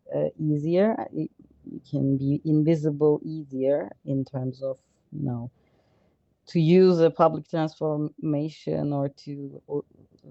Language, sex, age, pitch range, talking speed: English, female, 30-49, 140-165 Hz, 115 wpm